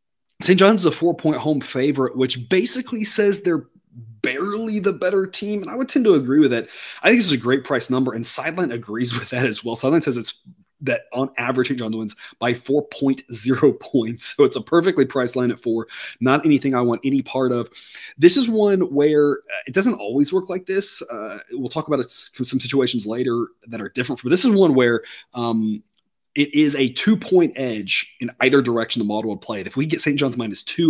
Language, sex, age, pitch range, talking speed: English, male, 30-49, 125-185 Hz, 215 wpm